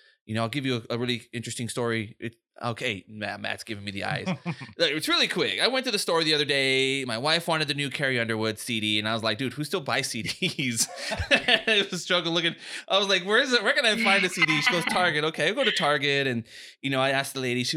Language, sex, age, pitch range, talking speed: English, male, 20-39, 120-175 Hz, 265 wpm